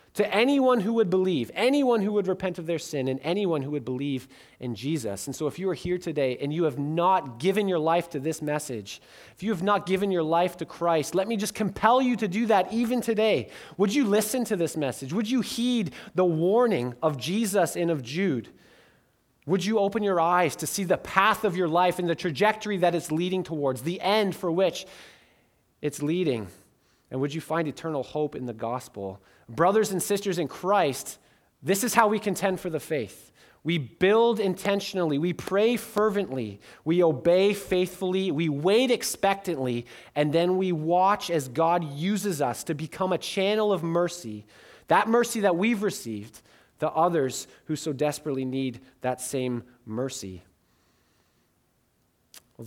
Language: English